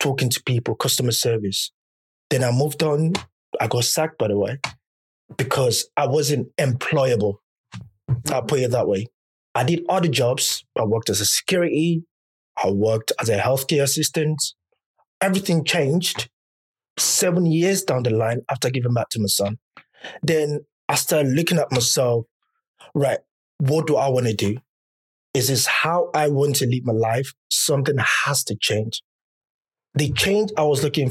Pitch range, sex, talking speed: 120-165 Hz, male, 160 wpm